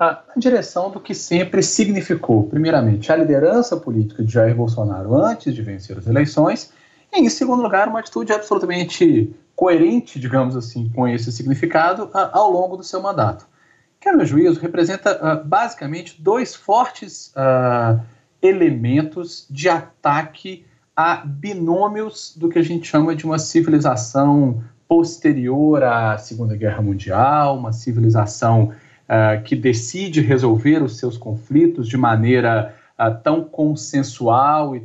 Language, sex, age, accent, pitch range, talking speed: Portuguese, male, 40-59, Brazilian, 120-170 Hz, 135 wpm